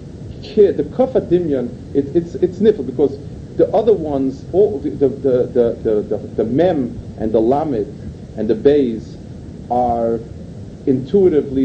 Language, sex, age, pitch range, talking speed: English, male, 50-69, 125-170 Hz, 135 wpm